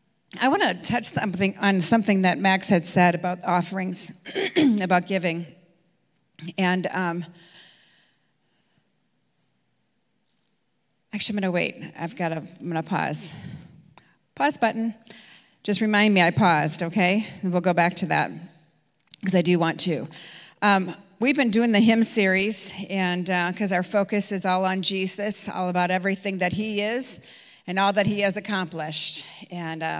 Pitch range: 170-200 Hz